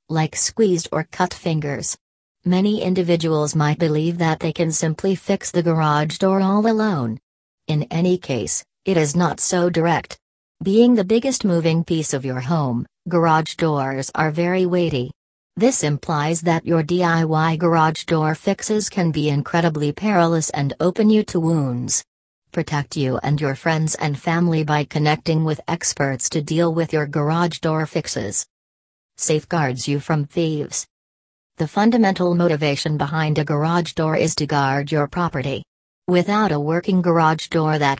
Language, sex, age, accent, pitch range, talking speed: English, female, 40-59, American, 145-170 Hz, 155 wpm